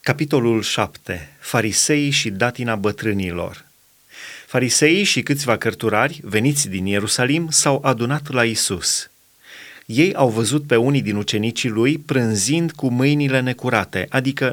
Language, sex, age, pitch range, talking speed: Romanian, male, 30-49, 110-140 Hz, 125 wpm